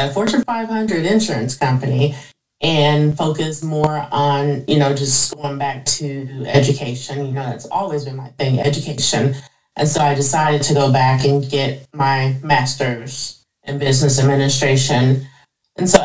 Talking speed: 145 wpm